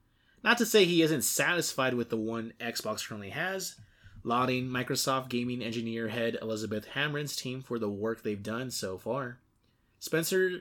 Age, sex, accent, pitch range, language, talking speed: 20-39, male, American, 110-135 Hz, English, 160 wpm